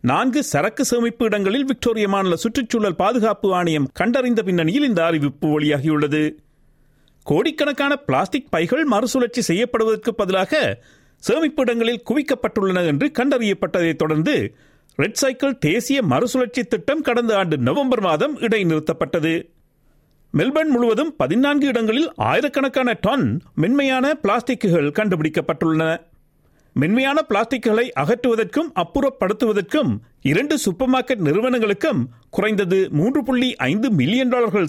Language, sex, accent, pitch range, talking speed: Tamil, male, native, 175-255 Hz, 100 wpm